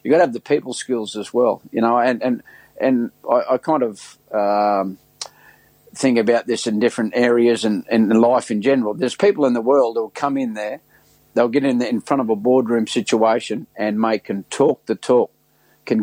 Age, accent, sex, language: 50-69, Australian, male, English